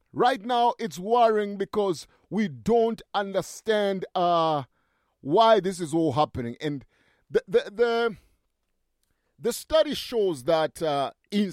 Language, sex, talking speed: English, male, 125 wpm